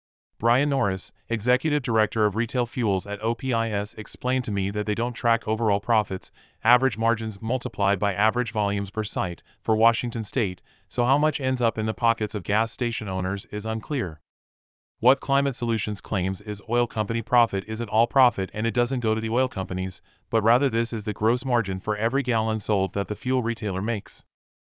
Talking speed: 190 wpm